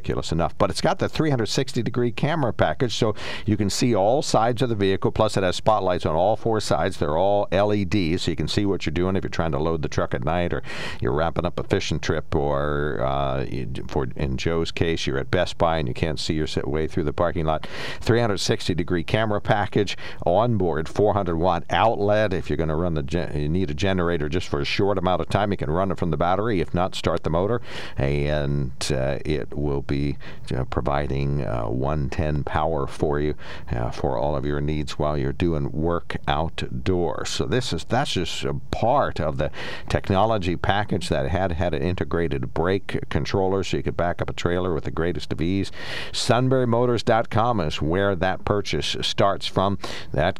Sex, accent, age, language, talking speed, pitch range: male, American, 50-69, English, 200 wpm, 75-100 Hz